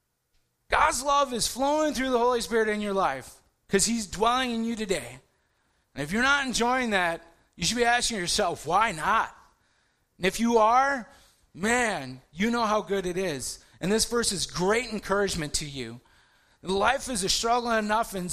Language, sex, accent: English, male, American